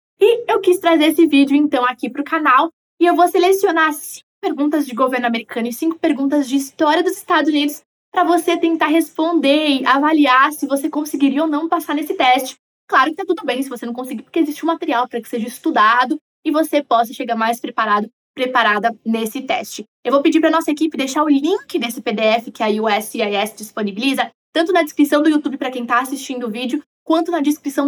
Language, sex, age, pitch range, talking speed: Portuguese, female, 20-39, 245-315 Hz, 210 wpm